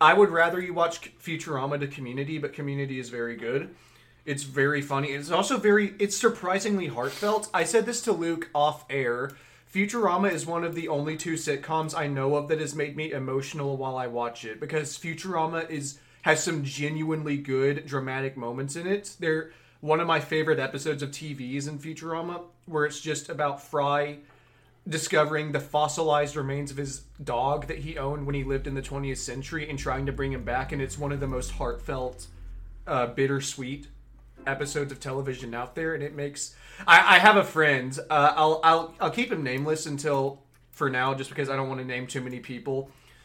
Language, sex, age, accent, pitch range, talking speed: English, male, 30-49, American, 135-160 Hz, 195 wpm